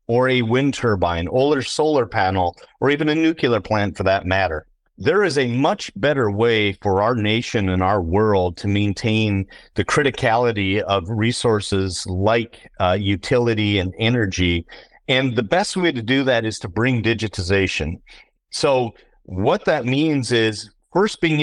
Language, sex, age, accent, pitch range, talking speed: English, male, 40-59, American, 100-135 Hz, 160 wpm